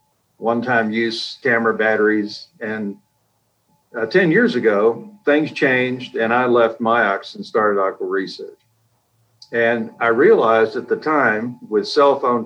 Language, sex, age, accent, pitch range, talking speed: English, male, 50-69, American, 110-140 Hz, 135 wpm